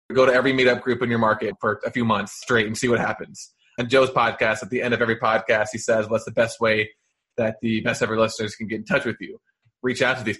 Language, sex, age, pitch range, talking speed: English, male, 20-39, 110-125 Hz, 275 wpm